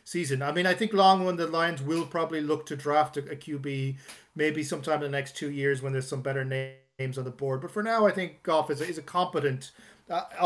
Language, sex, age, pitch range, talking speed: English, male, 30-49, 140-175 Hz, 245 wpm